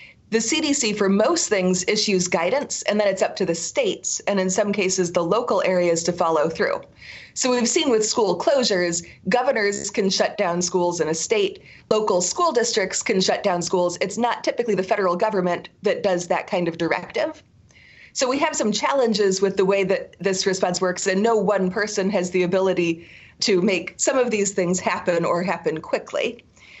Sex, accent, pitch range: female, American, 185-230 Hz